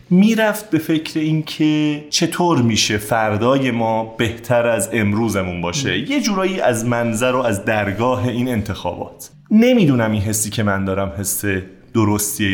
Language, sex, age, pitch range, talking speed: Persian, male, 30-49, 105-155 Hz, 145 wpm